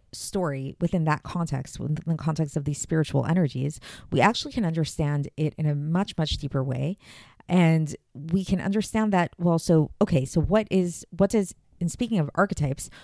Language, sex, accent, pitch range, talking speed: English, female, American, 145-180 Hz, 180 wpm